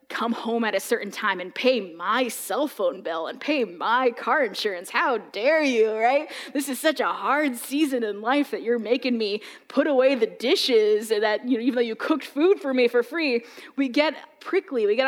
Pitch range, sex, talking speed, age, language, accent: 225-275 Hz, female, 215 wpm, 20-39, English, American